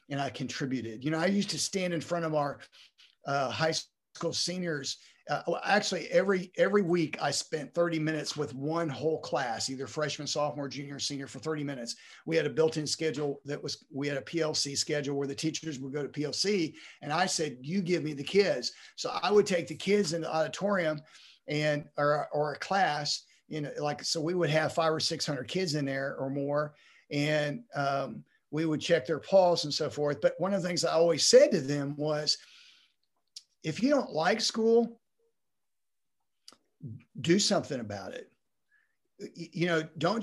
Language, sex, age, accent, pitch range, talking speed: English, male, 50-69, American, 145-180 Hz, 190 wpm